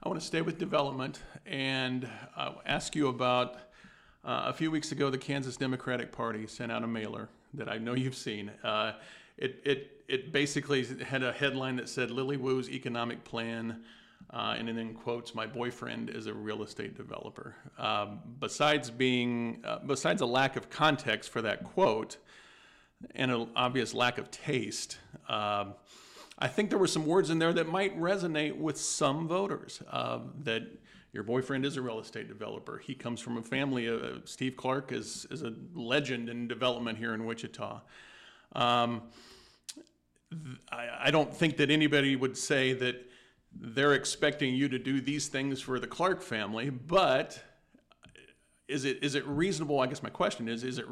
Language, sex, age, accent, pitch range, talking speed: English, male, 40-59, American, 120-145 Hz, 175 wpm